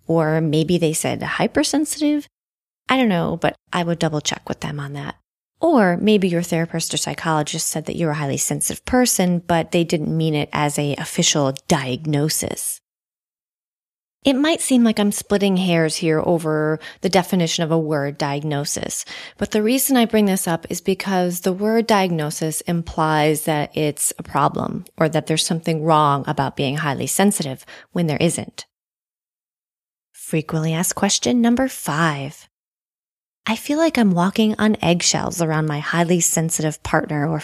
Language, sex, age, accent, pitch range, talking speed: English, female, 30-49, American, 155-195 Hz, 160 wpm